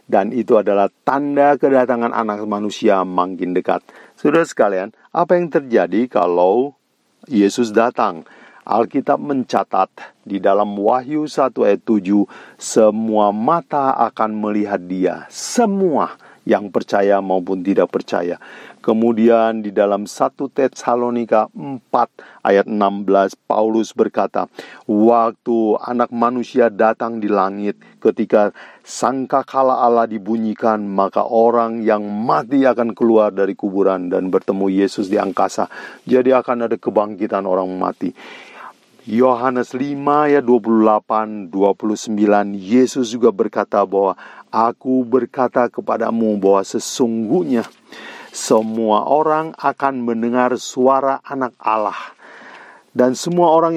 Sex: male